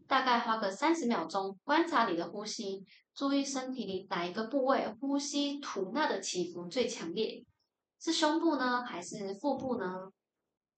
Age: 20-39